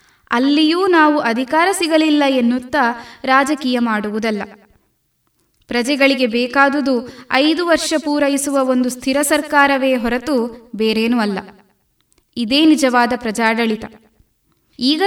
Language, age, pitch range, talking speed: Kannada, 20-39, 230-290 Hz, 90 wpm